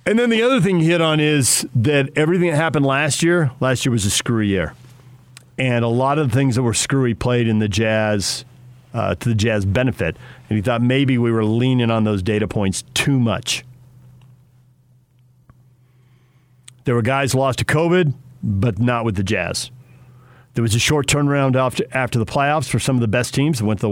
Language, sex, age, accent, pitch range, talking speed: English, male, 40-59, American, 115-135 Hz, 205 wpm